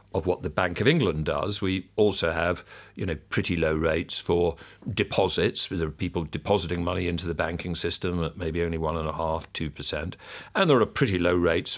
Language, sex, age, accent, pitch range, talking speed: English, male, 50-69, British, 80-110 Hz, 210 wpm